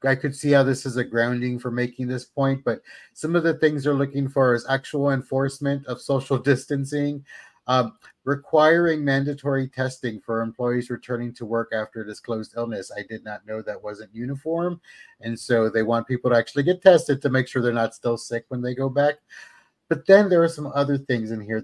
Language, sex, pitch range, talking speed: English, male, 115-140 Hz, 205 wpm